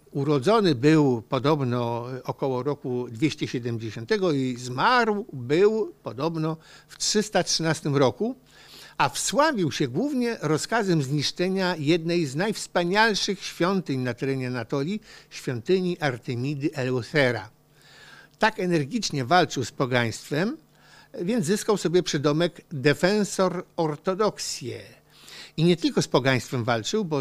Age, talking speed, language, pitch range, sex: 60-79, 105 wpm, Polish, 135-190 Hz, male